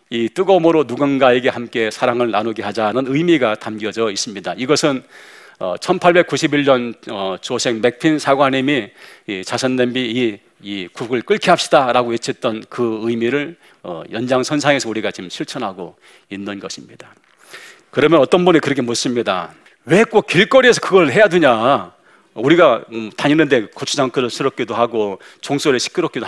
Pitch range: 115-165 Hz